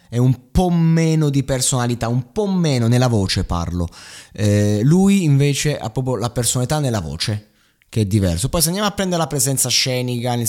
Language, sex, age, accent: Italian, male, 20-39, native